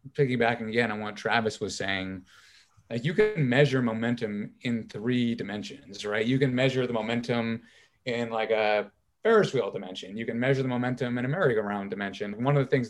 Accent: American